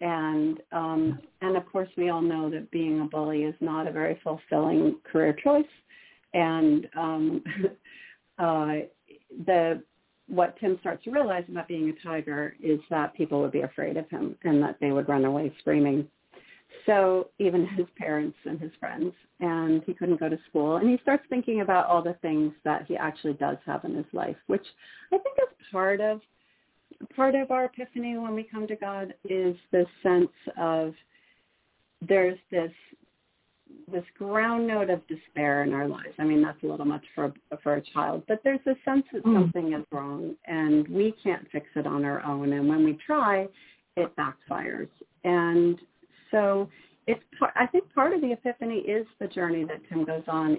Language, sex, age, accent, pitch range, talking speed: English, female, 40-59, American, 155-210 Hz, 185 wpm